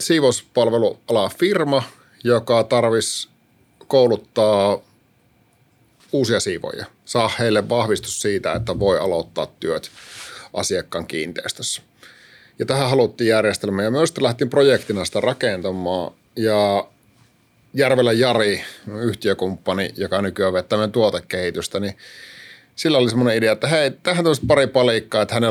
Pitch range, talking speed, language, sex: 105-130 Hz, 115 wpm, Finnish, male